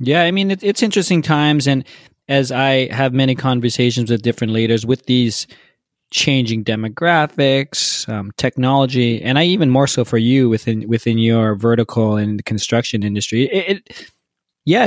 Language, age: English, 20-39